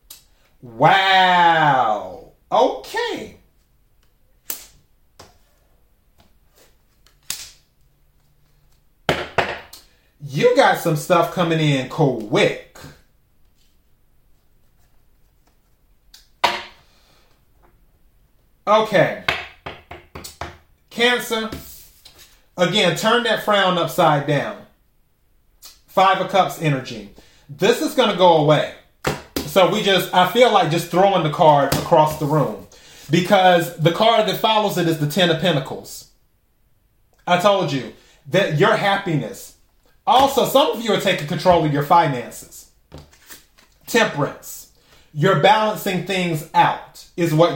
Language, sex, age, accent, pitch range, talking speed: English, male, 30-49, American, 155-200 Hz, 95 wpm